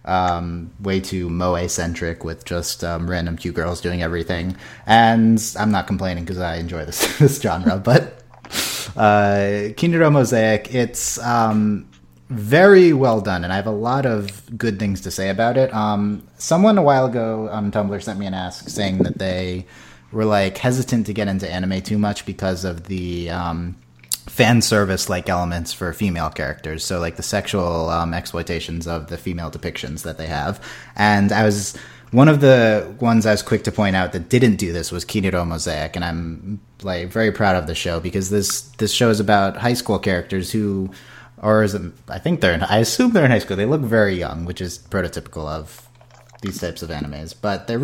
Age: 30-49